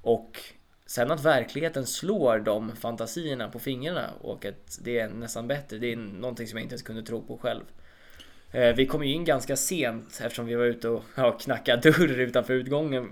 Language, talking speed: Swedish, 190 wpm